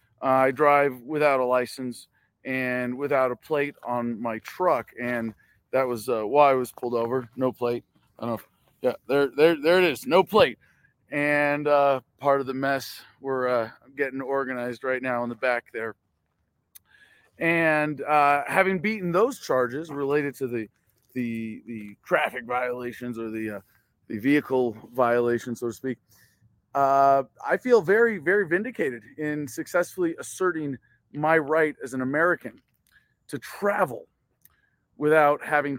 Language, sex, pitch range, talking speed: English, male, 120-150 Hz, 155 wpm